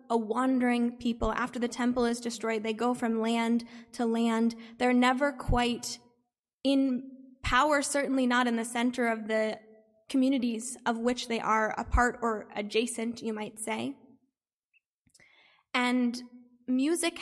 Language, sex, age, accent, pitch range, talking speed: English, female, 10-29, American, 230-255 Hz, 140 wpm